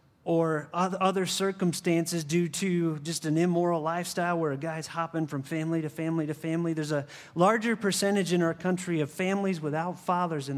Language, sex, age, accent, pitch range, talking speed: English, male, 30-49, American, 155-180 Hz, 175 wpm